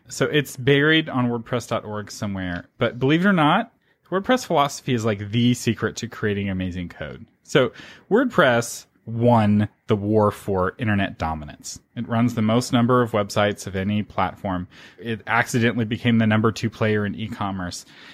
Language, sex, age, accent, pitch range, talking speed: English, male, 30-49, American, 105-135 Hz, 160 wpm